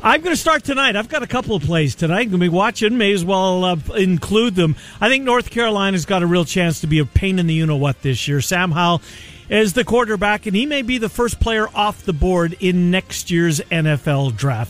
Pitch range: 155-215 Hz